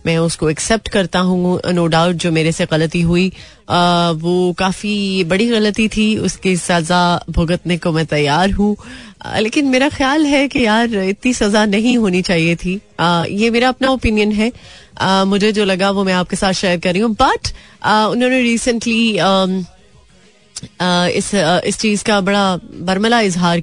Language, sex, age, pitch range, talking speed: Hindi, female, 30-49, 170-215 Hz, 165 wpm